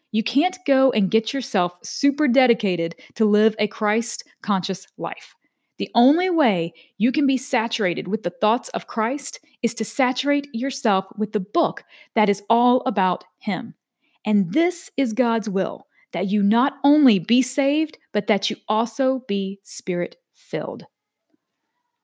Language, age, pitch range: English, 30-49, 200-260 Hz